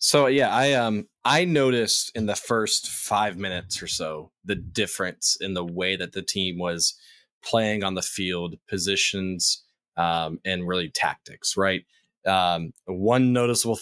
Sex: male